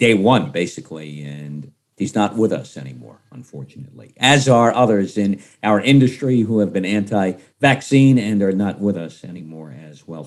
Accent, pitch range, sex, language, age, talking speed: American, 110-145 Hz, male, English, 50-69, 170 wpm